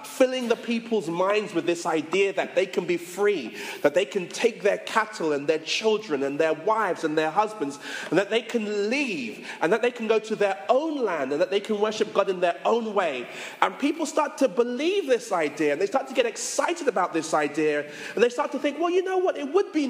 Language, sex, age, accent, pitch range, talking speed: English, male, 30-49, British, 195-275 Hz, 240 wpm